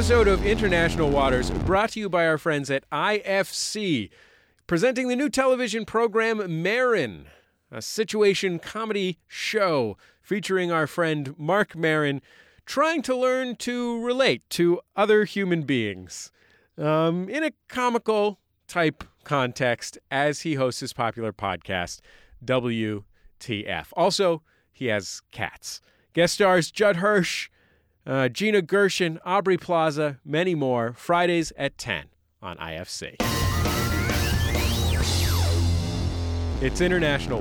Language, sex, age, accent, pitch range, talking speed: English, male, 40-59, American, 115-195 Hz, 115 wpm